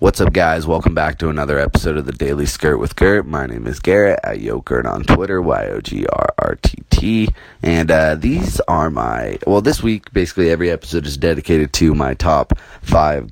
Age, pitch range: 20-39, 75-90 Hz